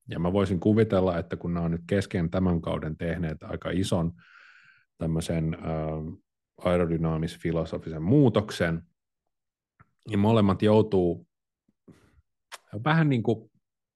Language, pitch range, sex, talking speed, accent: Finnish, 85-105 Hz, male, 105 wpm, native